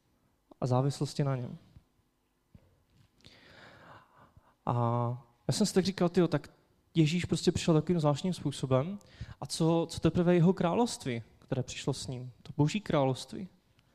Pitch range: 125-160 Hz